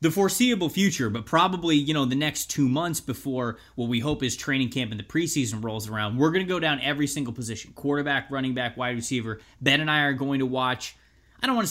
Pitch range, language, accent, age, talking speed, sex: 115-145 Hz, English, American, 20-39, 240 wpm, male